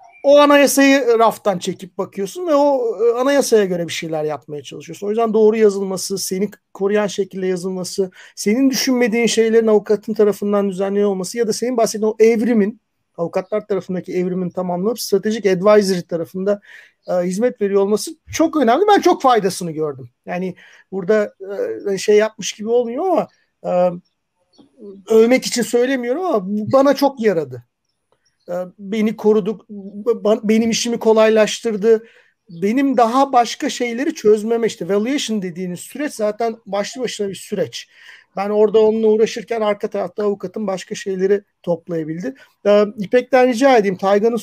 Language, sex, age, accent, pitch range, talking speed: Turkish, male, 50-69, native, 190-235 Hz, 135 wpm